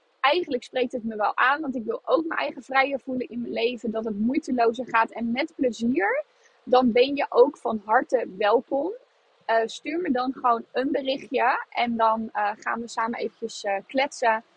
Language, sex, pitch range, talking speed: Dutch, female, 210-260 Hz, 195 wpm